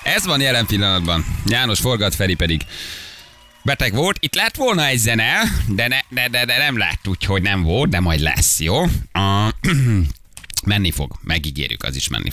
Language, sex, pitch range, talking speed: Hungarian, male, 80-105 Hz, 165 wpm